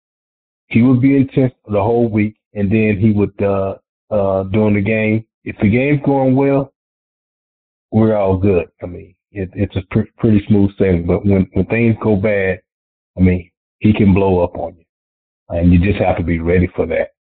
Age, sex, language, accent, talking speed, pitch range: 40-59, male, English, American, 195 wpm, 85-100 Hz